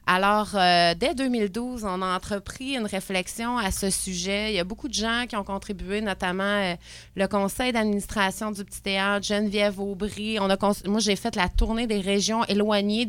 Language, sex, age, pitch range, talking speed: French, female, 30-49, 200-235 Hz, 195 wpm